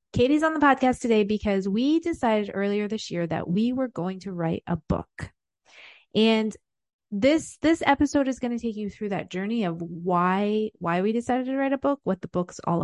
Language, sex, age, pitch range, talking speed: English, female, 30-49, 180-230 Hz, 205 wpm